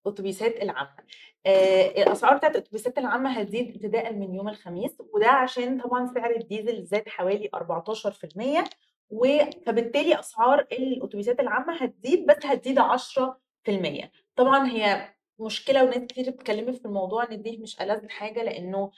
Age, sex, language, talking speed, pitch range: 20-39, female, Arabic, 125 wpm, 200-250 Hz